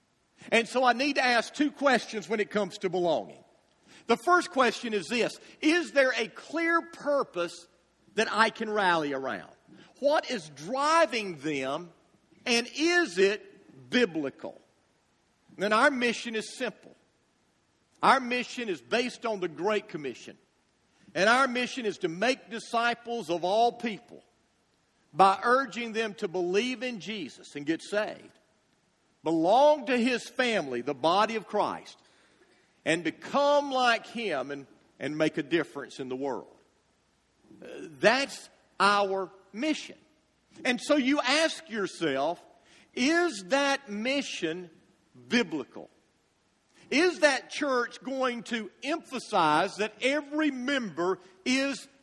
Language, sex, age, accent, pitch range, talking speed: English, male, 50-69, American, 200-280 Hz, 130 wpm